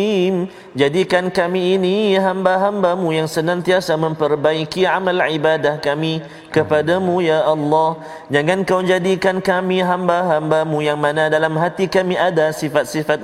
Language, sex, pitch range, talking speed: Malayalam, male, 115-160 Hz, 115 wpm